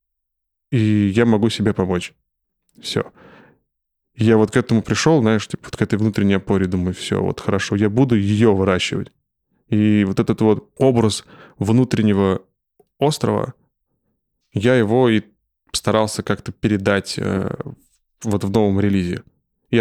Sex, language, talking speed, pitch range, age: male, Russian, 135 wpm, 100-115 Hz, 20-39